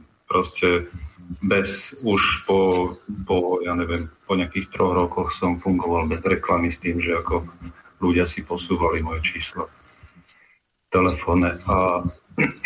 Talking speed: 120 wpm